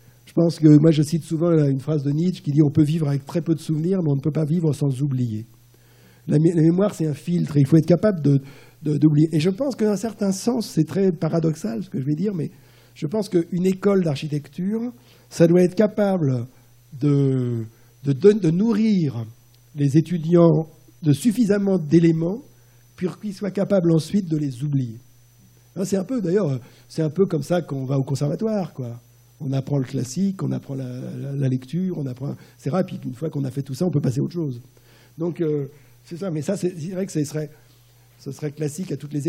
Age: 60-79